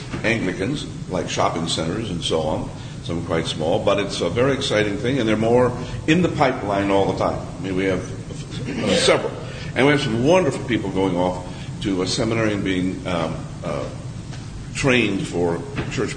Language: English